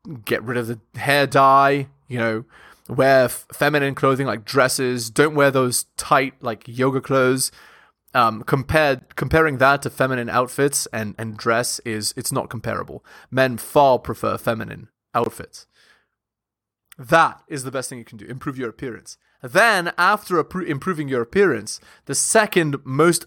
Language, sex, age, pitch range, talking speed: English, male, 20-39, 120-155 Hz, 145 wpm